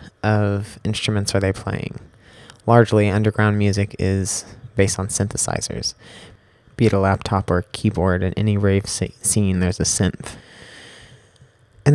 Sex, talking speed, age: male, 130 wpm, 30-49